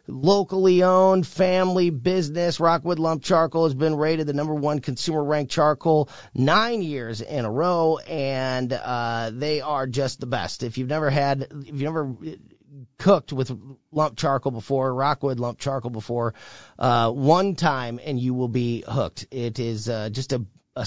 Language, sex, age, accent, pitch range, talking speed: English, male, 30-49, American, 120-160 Hz, 165 wpm